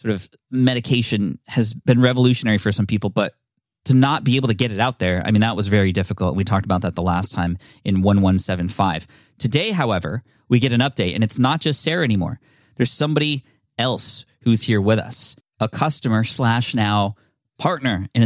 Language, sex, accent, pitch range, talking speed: English, male, American, 105-130 Hz, 190 wpm